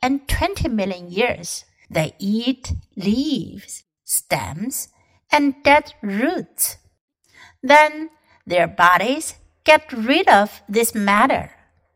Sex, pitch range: female, 205-300 Hz